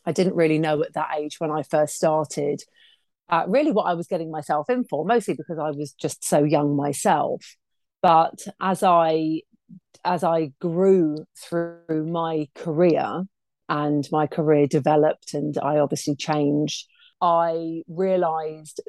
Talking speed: 145 wpm